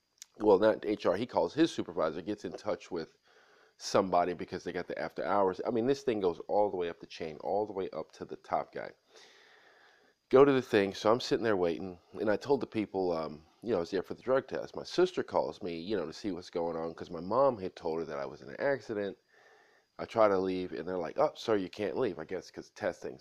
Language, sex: English, male